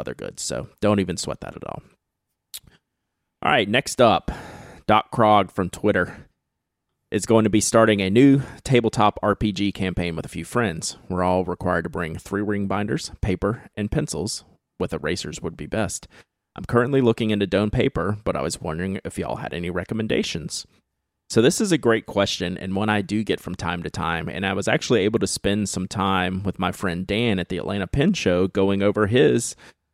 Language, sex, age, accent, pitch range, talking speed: English, male, 30-49, American, 90-105 Hz, 195 wpm